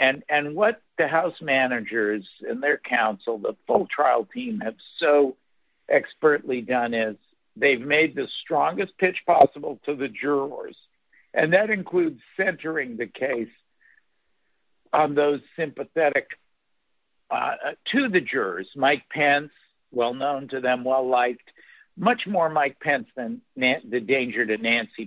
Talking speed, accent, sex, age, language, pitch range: 135 wpm, American, male, 60-79, English, 120-165 Hz